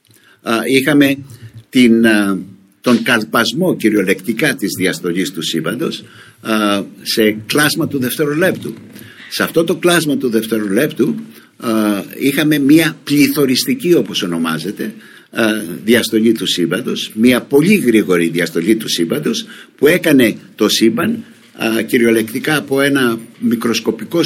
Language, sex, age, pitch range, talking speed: Greek, male, 60-79, 110-155 Hz, 100 wpm